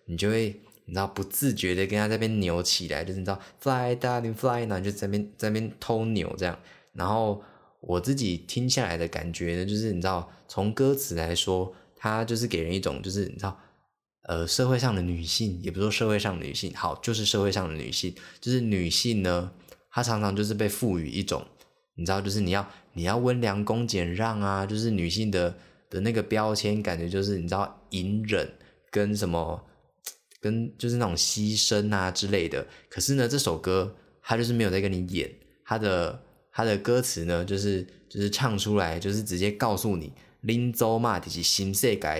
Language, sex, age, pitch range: Chinese, male, 20-39, 90-110 Hz